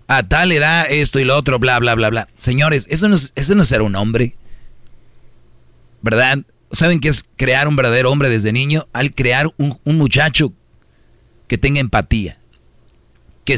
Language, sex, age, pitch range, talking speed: Spanish, male, 40-59, 115-140 Hz, 170 wpm